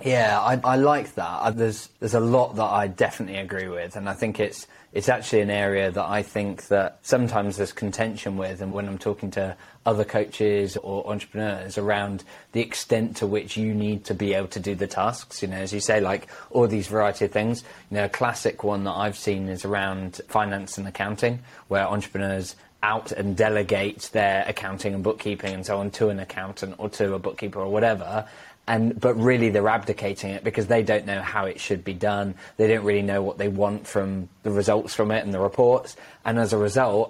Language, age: English, 20-39